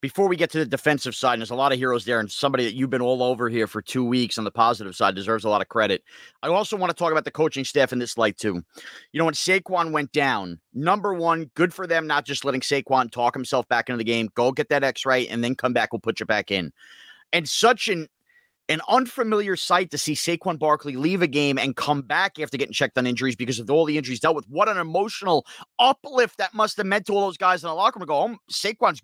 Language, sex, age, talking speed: English, male, 30-49, 265 wpm